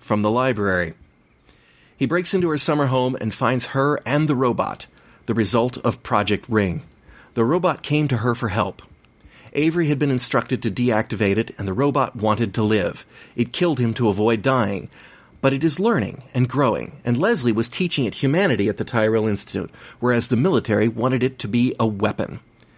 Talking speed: 185 wpm